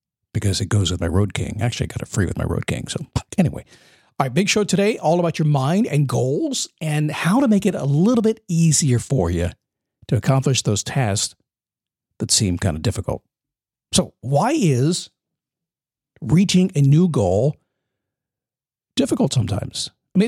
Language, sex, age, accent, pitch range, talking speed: English, male, 50-69, American, 125-190 Hz, 180 wpm